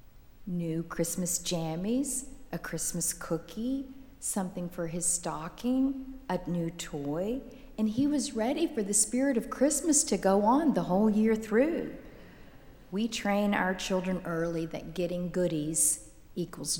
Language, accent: English, American